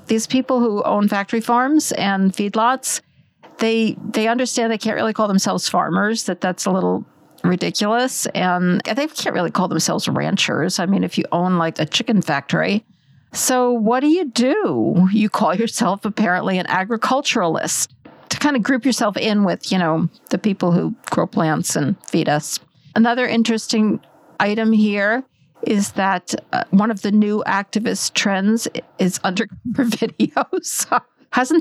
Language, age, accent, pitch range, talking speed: English, 50-69, American, 180-230 Hz, 160 wpm